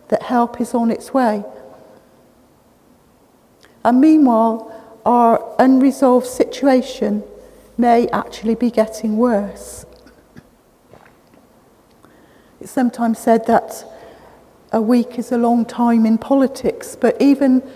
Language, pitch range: English, 225-260 Hz